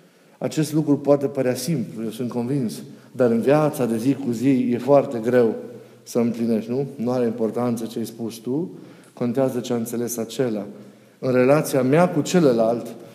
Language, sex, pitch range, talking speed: Romanian, male, 115-150 Hz, 170 wpm